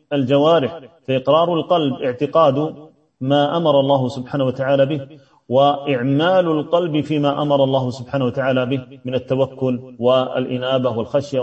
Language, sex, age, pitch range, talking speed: Arabic, male, 40-59, 130-150 Hz, 115 wpm